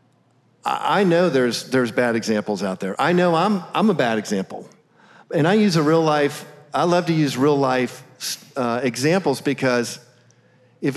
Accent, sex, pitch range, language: American, male, 125-155 Hz, English